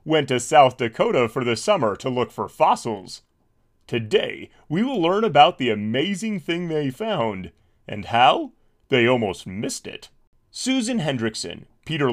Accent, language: American, English